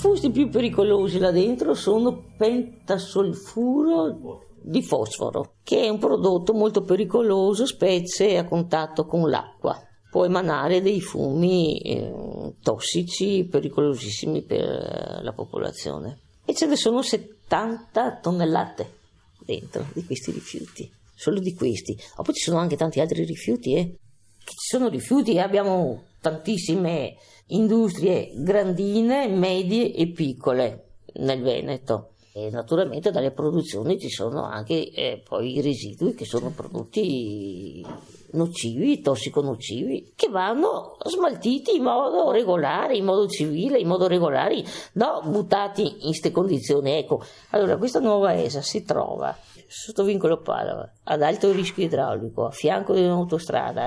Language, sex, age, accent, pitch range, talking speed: Italian, female, 50-69, native, 150-215 Hz, 130 wpm